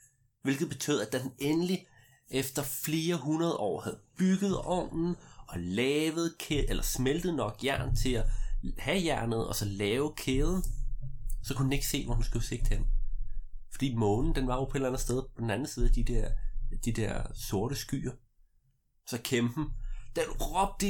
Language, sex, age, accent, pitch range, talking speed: Danish, male, 30-49, native, 105-140 Hz, 180 wpm